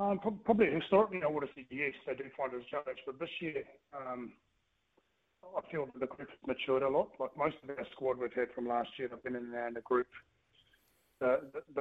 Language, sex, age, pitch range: English, male, 30-49, 125-140 Hz